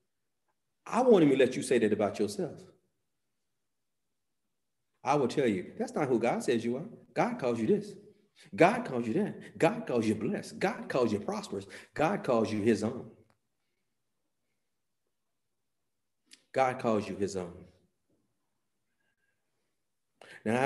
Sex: male